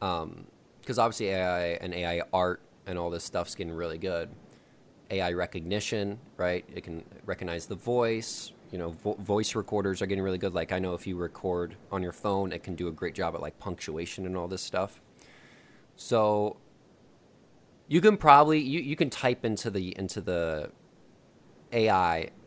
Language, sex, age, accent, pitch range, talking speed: English, male, 20-39, American, 90-110 Hz, 175 wpm